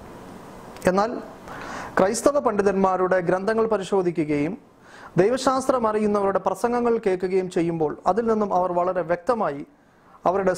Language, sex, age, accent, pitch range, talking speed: Malayalam, male, 30-49, native, 180-235 Hz, 90 wpm